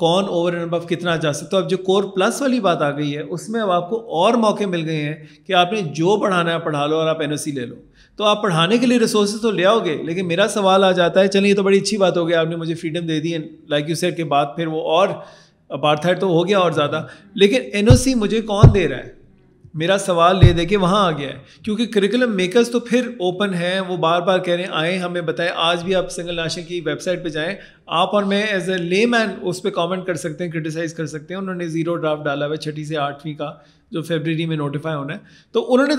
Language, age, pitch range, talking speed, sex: Urdu, 30-49, 155-195 Hz, 250 wpm, male